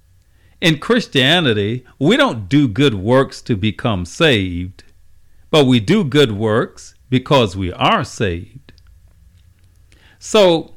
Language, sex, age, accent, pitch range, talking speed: English, male, 50-69, American, 105-145 Hz, 110 wpm